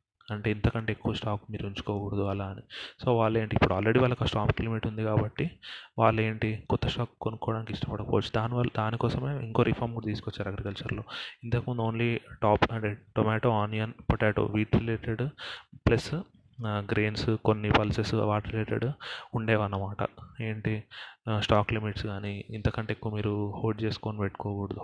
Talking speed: 115 wpm